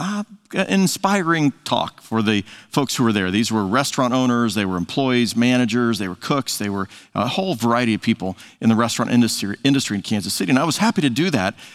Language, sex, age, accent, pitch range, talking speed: English, male, 50-69, American, 115-145 Hz, 215 wpm